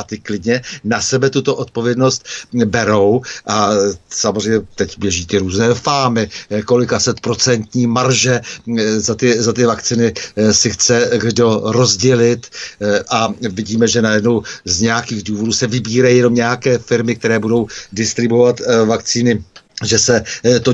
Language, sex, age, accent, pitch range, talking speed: Czech, male, 60-79, native, 110-125 Hz, 135 wpm